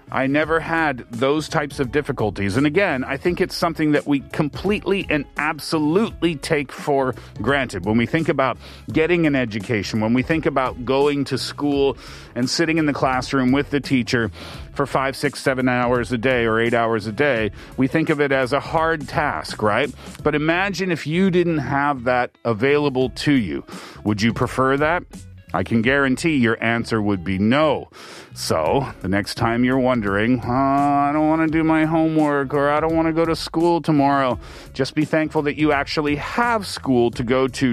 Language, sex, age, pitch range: Korean, male, 40-59, 115-150 Hz